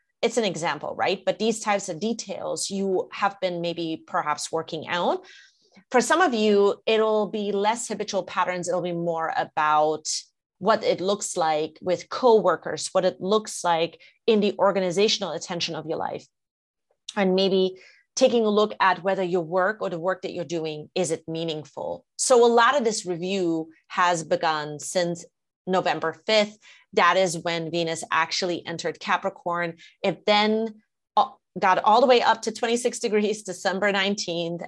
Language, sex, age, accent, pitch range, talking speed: English, female, 30-49, American, 170-210 Hz, 165 wpm